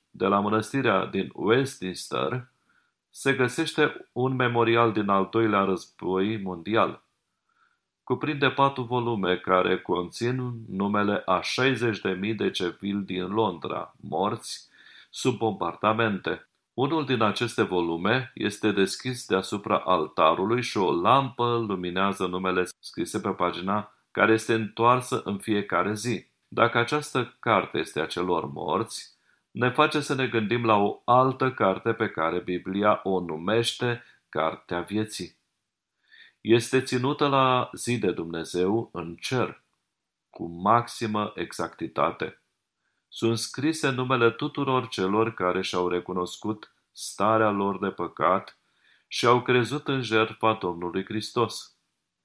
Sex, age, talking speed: male, 40-59, 120 wpm